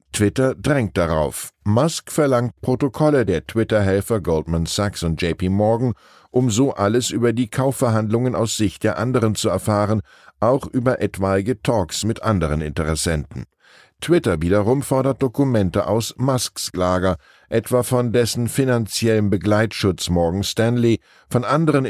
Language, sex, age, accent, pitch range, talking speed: German, male, 10-29, German, 95-125 Hz, 130 wpm